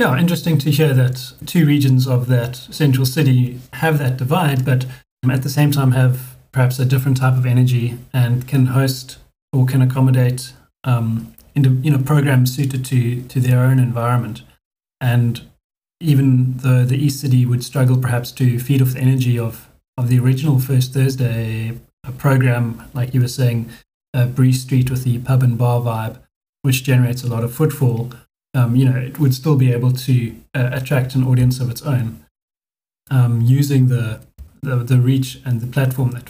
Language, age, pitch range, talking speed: English, 30-49, 125-140 Hz, 185 wpm